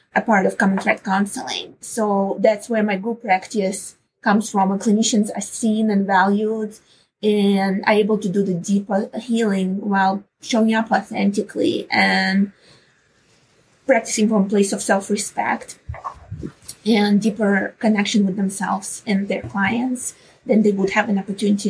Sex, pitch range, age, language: female, 200-225 Hz, 20-39, English